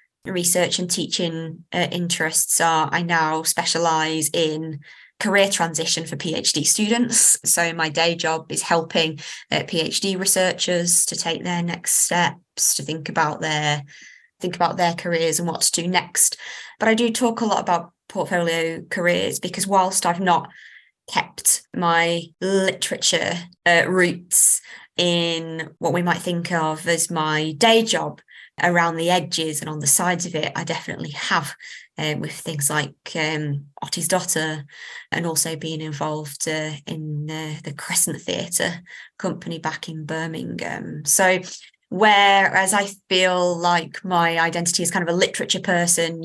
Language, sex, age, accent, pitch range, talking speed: English, female, 20-39, British, 160-185 Hz, 150 wpm